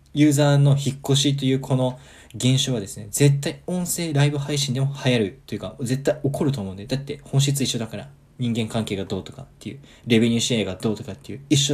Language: Japanese